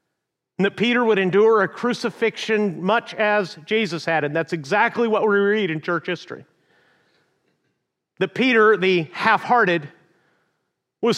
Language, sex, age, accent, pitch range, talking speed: English, male, 40-59, American, 170-210 Hz, 135 wpm